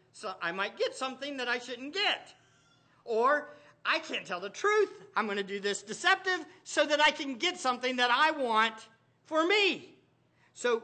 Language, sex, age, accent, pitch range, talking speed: English, male, 50-69, American, 235-315 Hz, 185 wpm